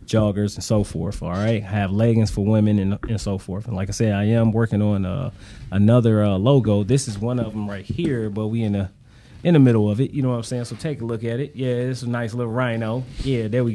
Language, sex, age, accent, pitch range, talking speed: English, male, 30-49, American, 105-125 Hz, 275 wpm